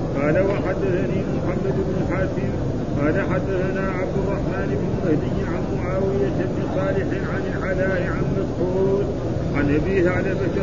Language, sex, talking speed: Arabic, male, 145 wpm